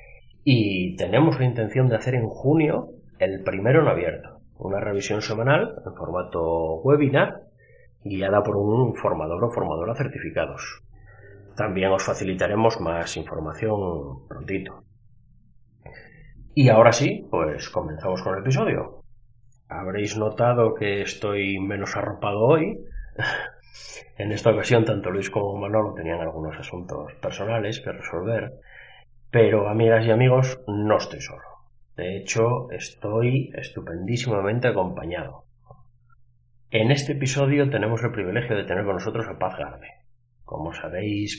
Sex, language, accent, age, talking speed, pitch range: male, Spanish, Spanish, 30-49, 125 wpm, 100-125 Hz